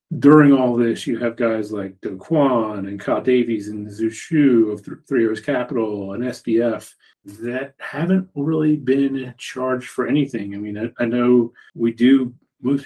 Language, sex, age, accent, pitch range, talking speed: English, male, 30-49, American, 110-125 Hz, 165 wpm